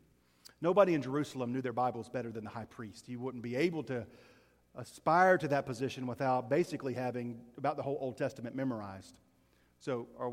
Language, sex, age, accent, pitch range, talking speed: English, male, 40-59, American, 120-170 Hz, 180 wpm